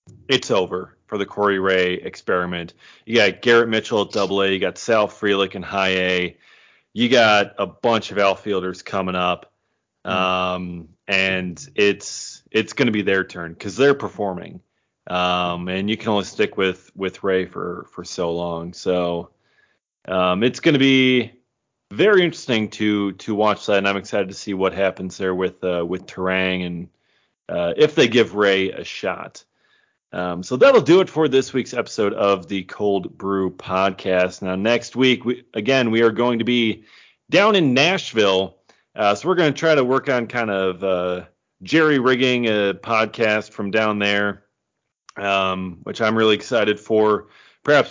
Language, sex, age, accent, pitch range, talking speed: English, male, 30-49, American, 95-120 Hz, 175 wpm